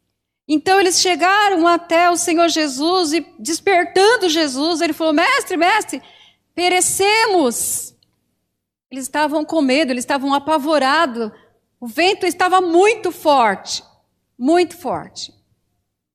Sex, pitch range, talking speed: female, 250-330 Hz, 110 wpm